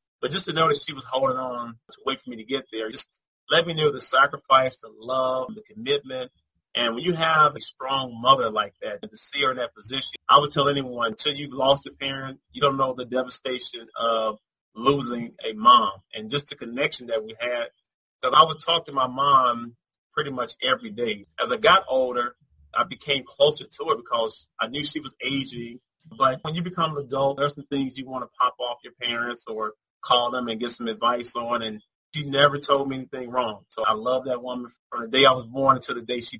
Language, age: English, 30-49